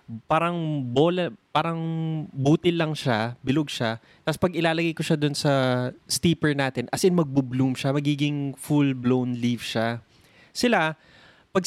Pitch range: 120-160 Hz